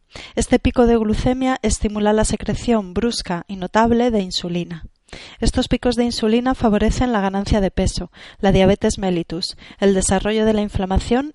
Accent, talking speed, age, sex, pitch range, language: Spanish, 155 wpm, 30-49, female, 195-225 Hz, Spanish